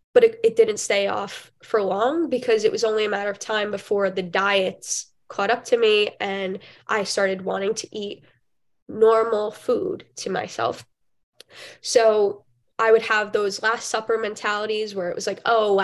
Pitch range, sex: 200-250 Hz, female